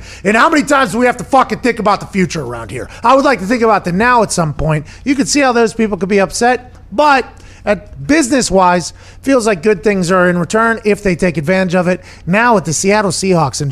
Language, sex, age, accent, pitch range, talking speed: English, male, 30-49, American, 160-215 Hz, 245 wpm